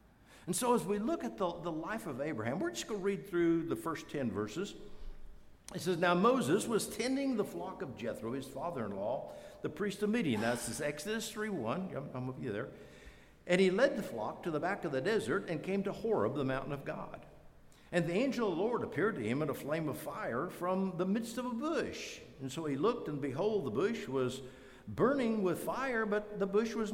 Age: 60-79